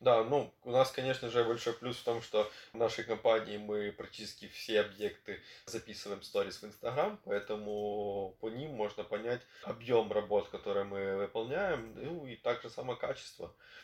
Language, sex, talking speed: Russian, male, 170 wpm